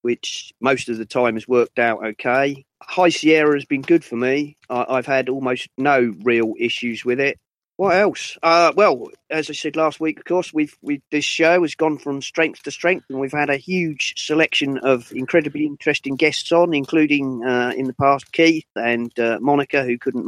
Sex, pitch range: male, 110-150 Hz